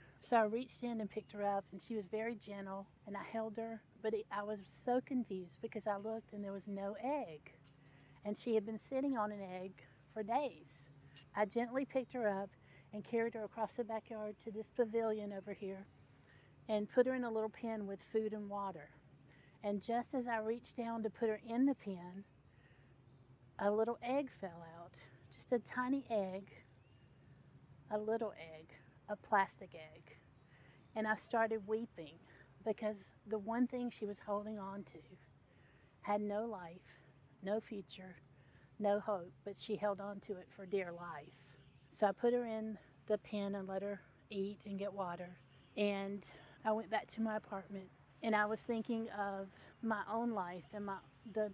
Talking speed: 180 wpm